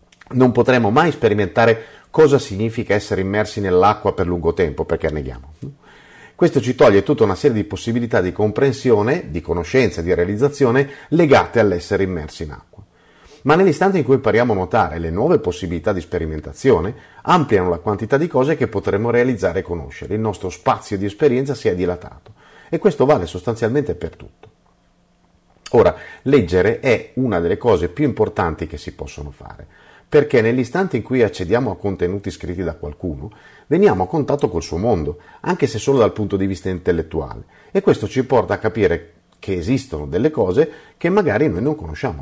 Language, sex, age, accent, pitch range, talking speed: Italian, male, 40-59, native, 90-125 Hz, 170 wpm